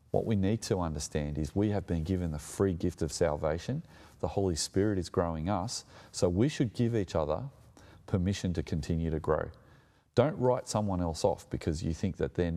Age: 30-49